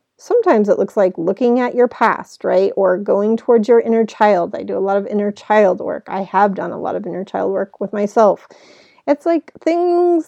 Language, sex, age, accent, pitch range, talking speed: English, female, 30-49, American, 210-295 Hz, 215 wpm